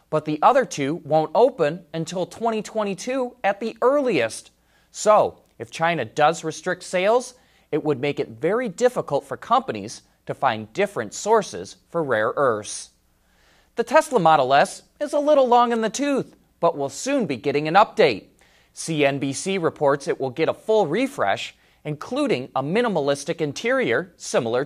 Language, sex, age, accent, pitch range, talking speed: English, male, 30-49, American, 135-215 Hz, 155 wpm